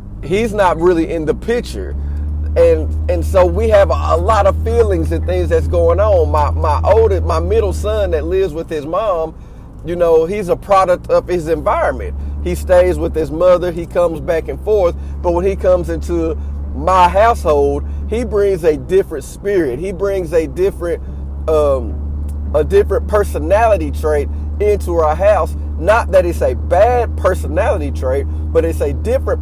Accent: American